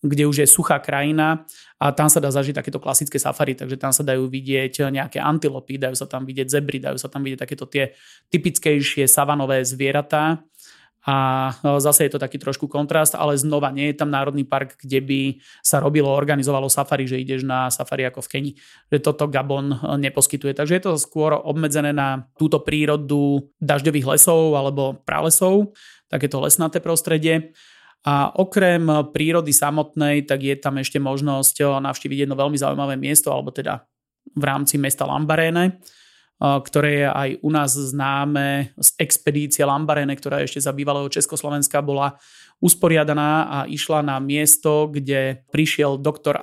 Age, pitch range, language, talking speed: 30-49, 140-150 Hz, Slovak, 160 wpm